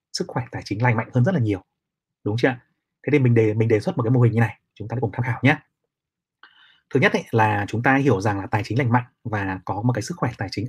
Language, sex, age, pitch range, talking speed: Vietnamese, male, 20-39, 110-135 Hz, 300 wpm